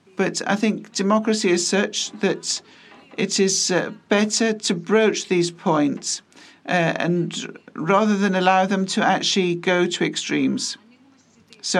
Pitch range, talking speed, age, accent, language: 175-215 Hz, 135 wpm, 50-69, British, Greek